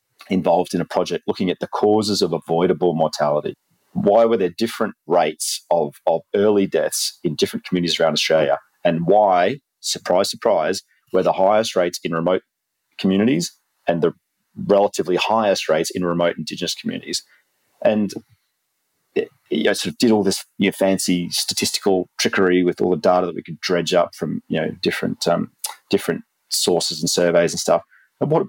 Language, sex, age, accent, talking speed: English, male, 30-49, Australian, 175 wpm